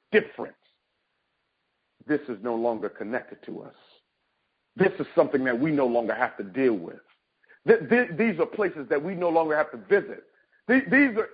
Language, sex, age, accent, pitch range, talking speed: English, male, 50-69, American, 185-250 Hz, 165 wpm